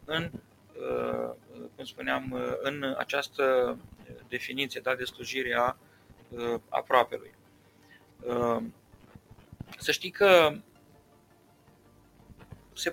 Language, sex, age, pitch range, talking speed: Romanian, male, 30-49, 120-155 Hz, 65 wpm